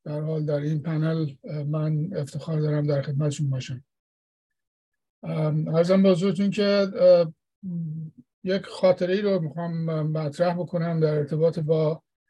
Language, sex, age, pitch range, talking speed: English, male, 50-69, 155-185 Hz, 120 wpm